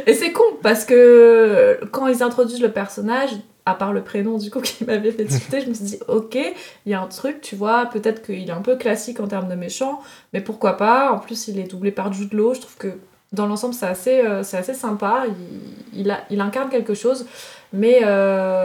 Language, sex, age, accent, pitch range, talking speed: French, female, 20-39, French, 200-245 Hz, 220 wpm